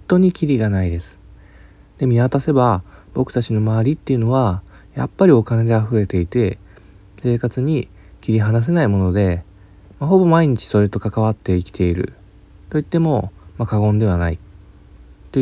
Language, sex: Japanese, male